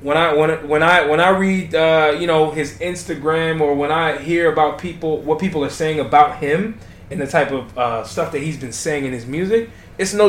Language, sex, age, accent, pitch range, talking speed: English, male, 20-39, American, 140-190 Hz, 235 wpm